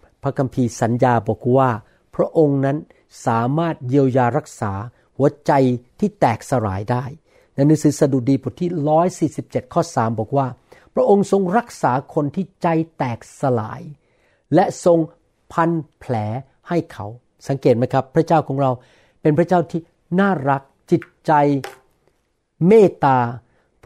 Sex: male